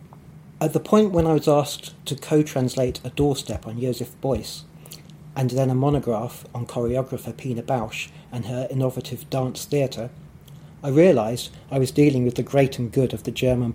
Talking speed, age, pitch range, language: 175 wpm, 40-59, 125-155 Hz, English